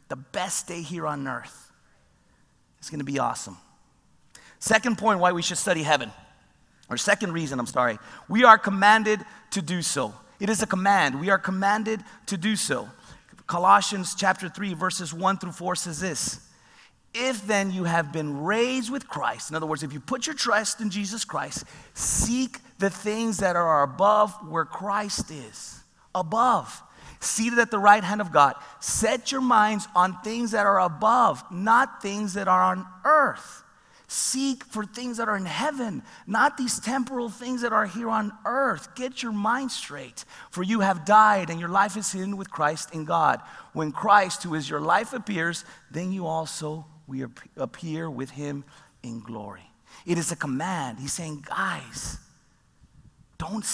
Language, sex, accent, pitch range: English, male, American, 160-220 Hz